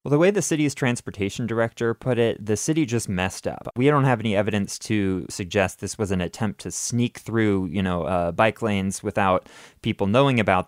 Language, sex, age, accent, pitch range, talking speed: English, male, 20-39, American, 100-130 Hz, 210 wpm